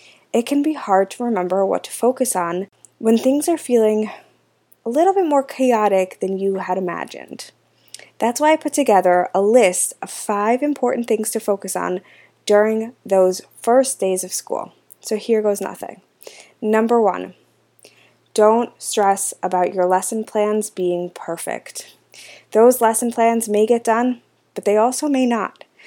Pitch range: 190-245 Hz